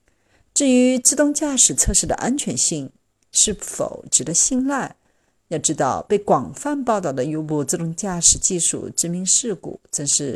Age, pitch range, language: 50-69, 165-245 Hz, Chinese